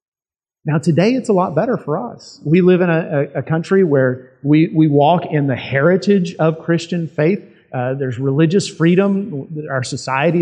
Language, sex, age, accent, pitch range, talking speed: English, male, 40-59, American, 135-175 Hz, 180 wpm